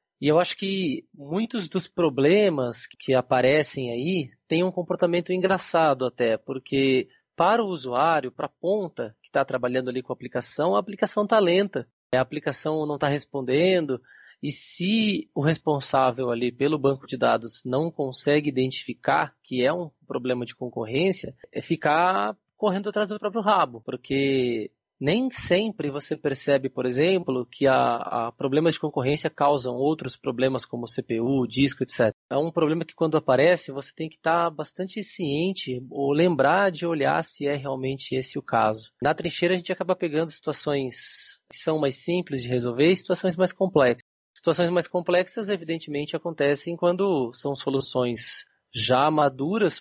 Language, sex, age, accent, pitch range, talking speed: English, male, 20-39, Brazilian, 130-170 Hz, 155 wpm